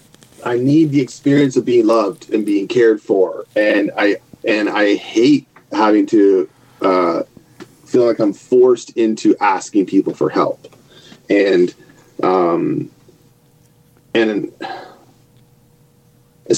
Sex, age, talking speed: male, 30-49, 115 wpm